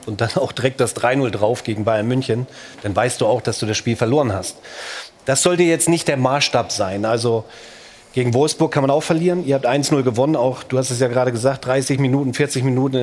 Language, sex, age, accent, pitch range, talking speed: German, male, 40-59, German, 125-155 Hz, 230 wpm